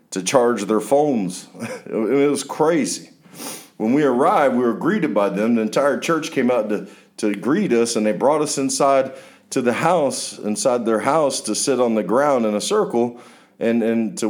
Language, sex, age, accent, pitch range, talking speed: English, male, 50-69, American, 105-135 Hz, 195 wpm